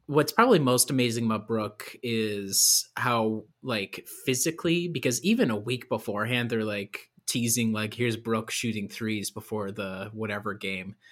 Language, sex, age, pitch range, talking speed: English, male, 20-39, 110-135 Hz, 145 wpm